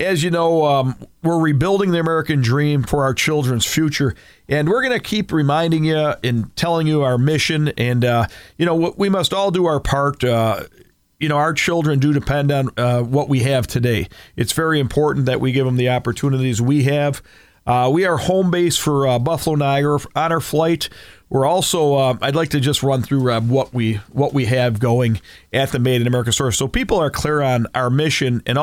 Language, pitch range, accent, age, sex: Japanese, 125-150 Hz, American, 40-59, male